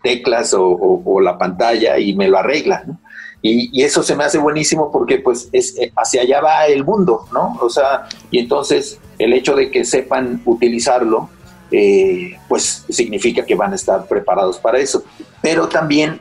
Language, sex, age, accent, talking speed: Spanish, male, 40-59, Mexican, 180 wpm